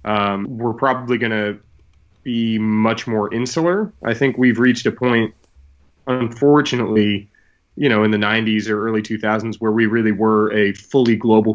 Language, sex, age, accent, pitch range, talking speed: English, male, 30-49, American, 105-120 Hz, 160 wpm